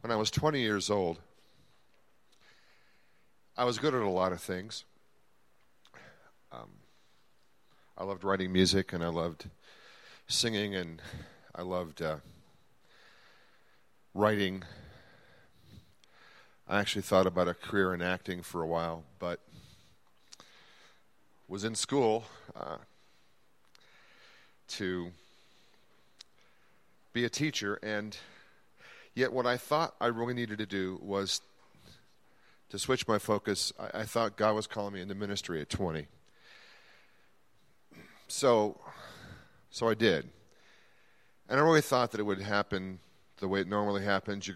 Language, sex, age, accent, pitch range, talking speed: English, male, 40-59, American, 90-110 Hz, 125 wpm